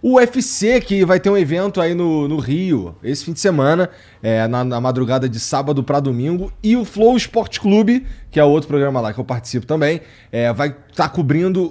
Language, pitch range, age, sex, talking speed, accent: Portuguese, 125-185 Hz, 20-39, male, 215 wpm, Brazilian